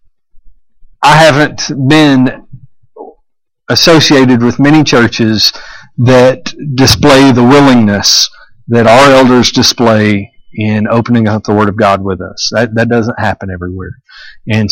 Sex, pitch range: male, 115-150 Hz